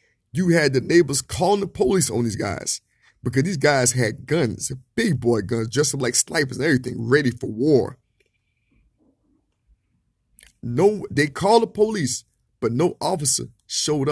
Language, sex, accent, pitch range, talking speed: English, male, American, 120-170 Hz, 150 wpm